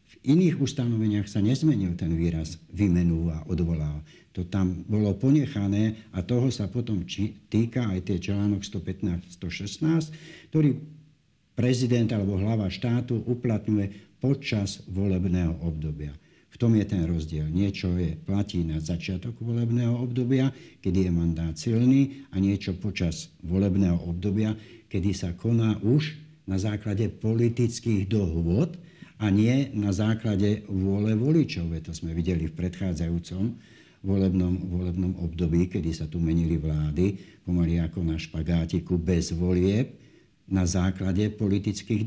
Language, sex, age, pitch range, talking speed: Slovak, male, 60-79, 90-115 Hz, 125 wpm